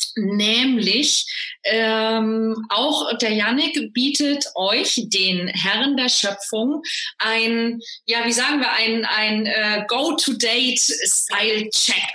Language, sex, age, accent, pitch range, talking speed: German, female, 30-49, German, 200-255 Hz, 100 wpm